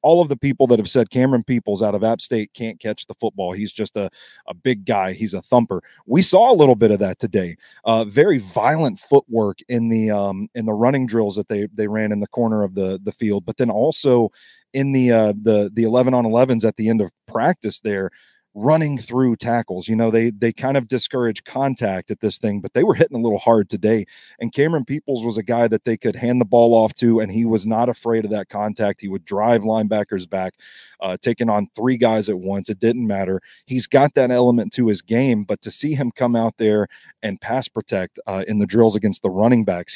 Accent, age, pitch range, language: American, 30-49, 105-125 Hz, English